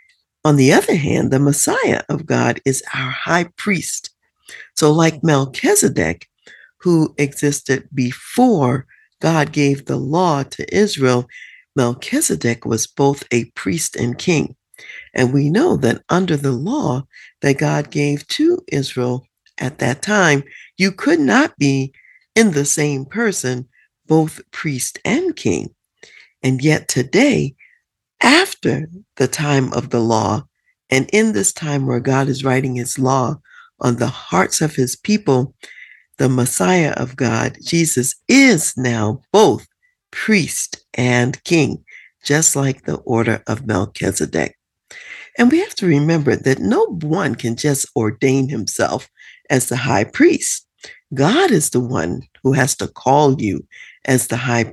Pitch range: 130-175 Hz